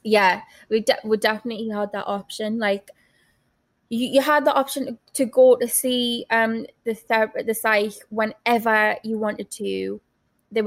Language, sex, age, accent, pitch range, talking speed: English, female, 20-39, British, 215-255 Hz, 165 wpm